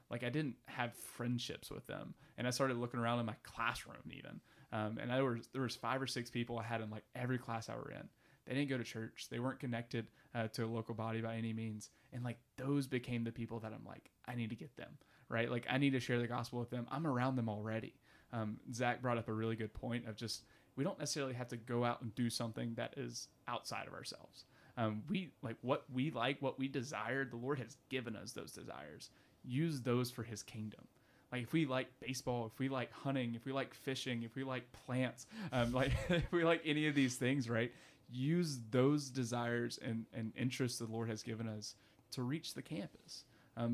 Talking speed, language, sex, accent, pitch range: 230 wpm, English, male, American, 115-130 Hz